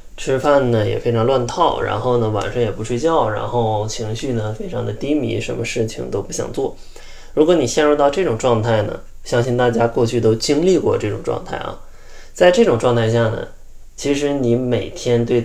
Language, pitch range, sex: Chinese, 110-125 Hz, male